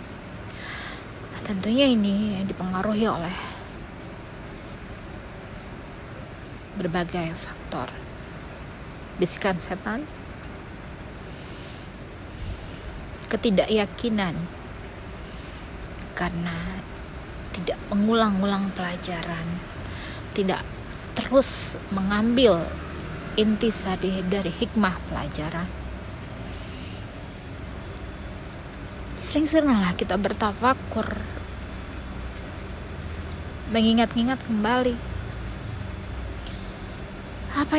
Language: Indonesian